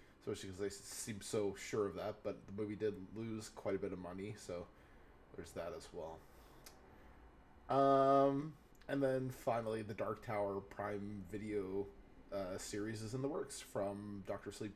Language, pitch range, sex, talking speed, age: English, 95-115 Hz, male, 165 wpm, 20-39